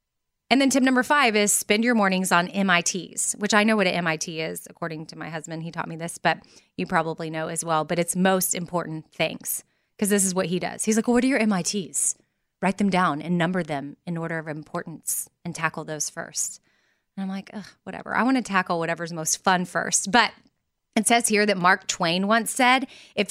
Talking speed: 225 wpm